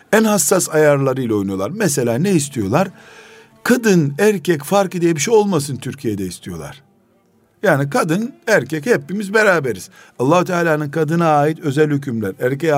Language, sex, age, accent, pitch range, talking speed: Turkish, male, 60-79, native, 140-180 Hz, 130 wpm